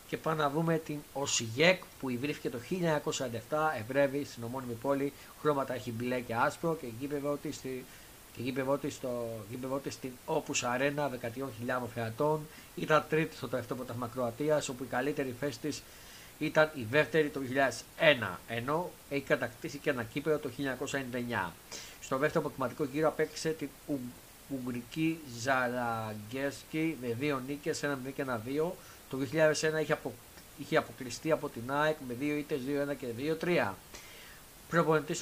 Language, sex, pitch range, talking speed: Greek, male, 125-155 Hz, 145 wpm